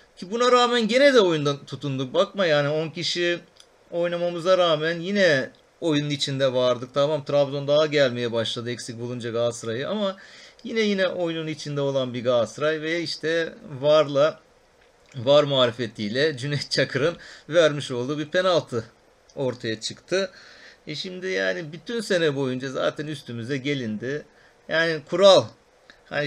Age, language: 40-59, Turkish